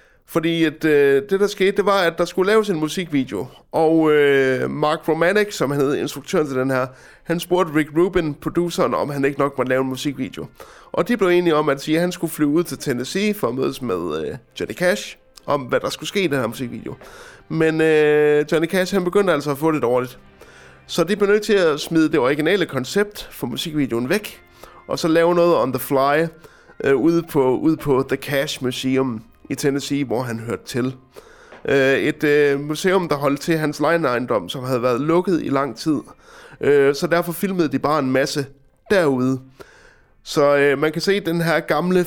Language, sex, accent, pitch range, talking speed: Danish, male, native, 135-165 Hz, 200 wpm